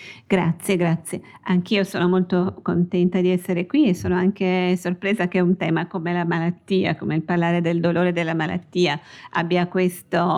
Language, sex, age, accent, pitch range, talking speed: Italian, female, 50-69, native, 160-185 Hz, 160 wpm